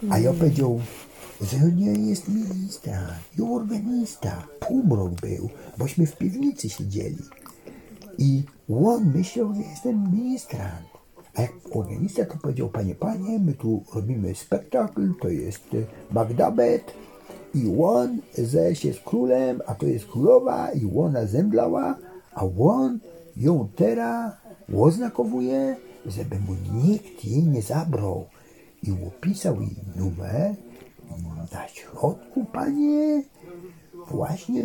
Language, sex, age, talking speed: Polish, male, 60-79, 115 wpm